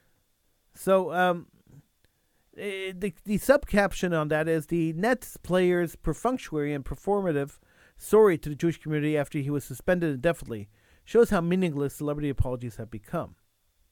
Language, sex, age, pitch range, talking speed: English, male, 40-59, 145-195 Hz, 135 wpm